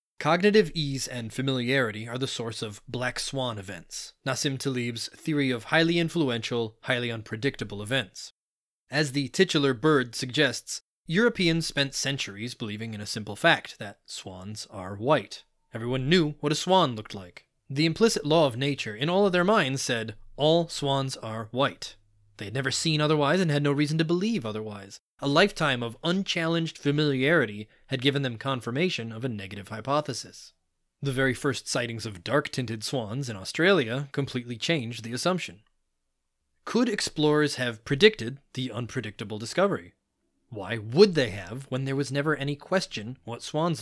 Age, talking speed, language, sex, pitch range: 20-39, 160 wpm, English, male, 115-155 Hz